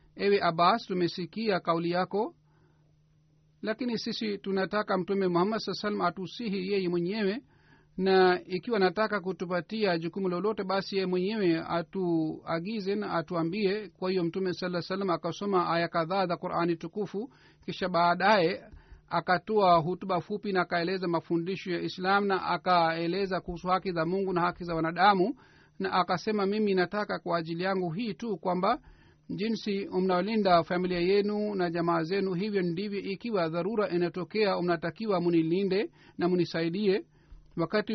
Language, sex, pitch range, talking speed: Swahili, male, 175-200 Hz, 130 wpm